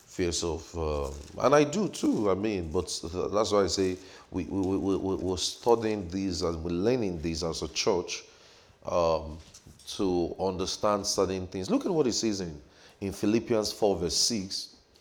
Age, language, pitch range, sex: 30-49, English, 95-125 Hz, male